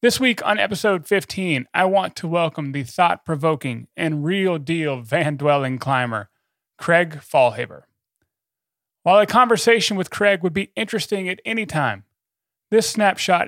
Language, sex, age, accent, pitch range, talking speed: English, male, 30-49, American, 135-195 Hz, 145 wpm